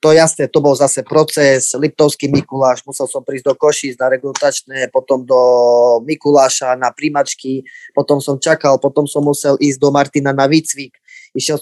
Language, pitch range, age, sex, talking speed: Slovak, 135-160 Hz, 20-39, male, 165 wpm